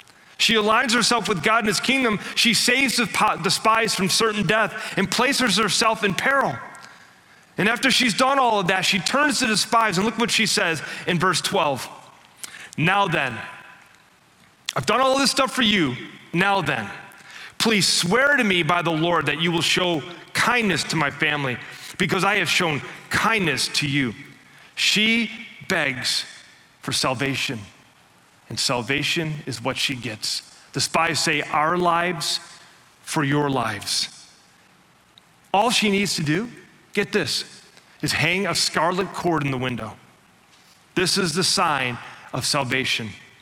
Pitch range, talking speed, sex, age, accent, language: 155-220 Hz, 155 wpm, male, 30-49, American, English